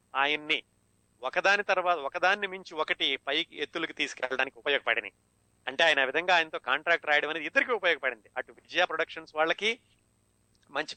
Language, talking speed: Telugu, 130 wpm